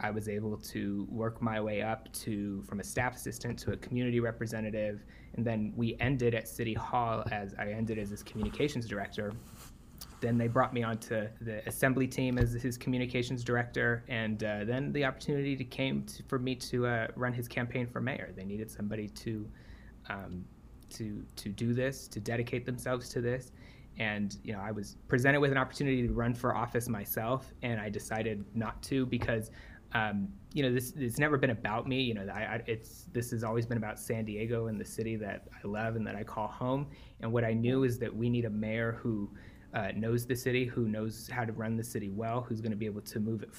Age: 20-39